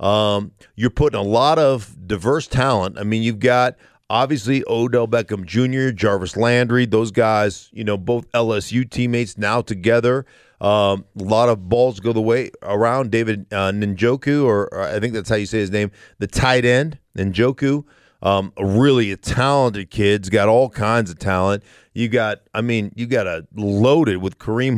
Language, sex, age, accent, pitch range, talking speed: English, male, 40-59, American, 105-140 Hz, 180 wpm